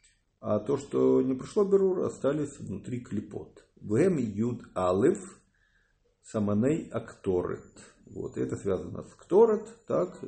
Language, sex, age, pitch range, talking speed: English, male, 50-69, 100-130 Hz, 100 wpm